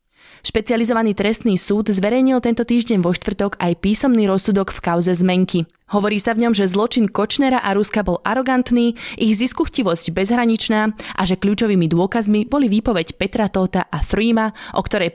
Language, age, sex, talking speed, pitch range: Slovak, 20-39, female, 160 wpm, 180-230 Hz